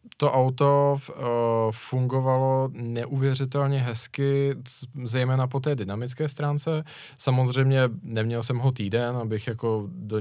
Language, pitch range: Czech, 115-130 Hz